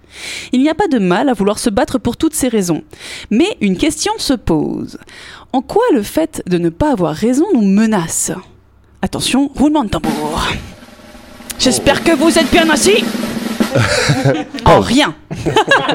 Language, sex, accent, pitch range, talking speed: French, female, French, 210-305 Hz, 155 wpm